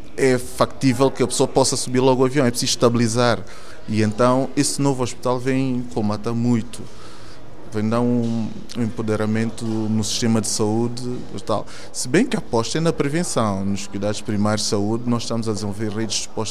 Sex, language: male, Portuguese